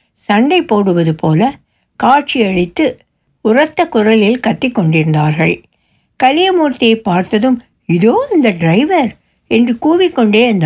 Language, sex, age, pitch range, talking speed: Tamil, female, 60-79, 180-275 Hz, 90 wpm